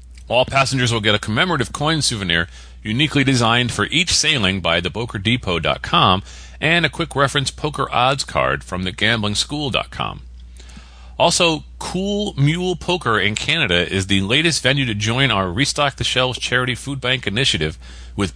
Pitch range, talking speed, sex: 90-140 Hz, 145 wpm, male